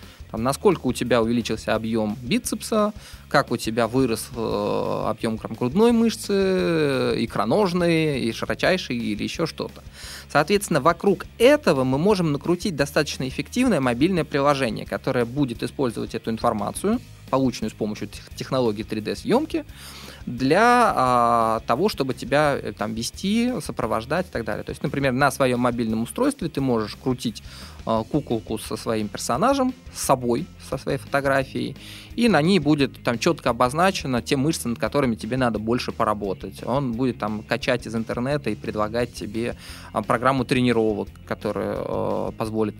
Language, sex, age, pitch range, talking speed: Russian, male, 20-39, 110-145 Hz, 130 wpm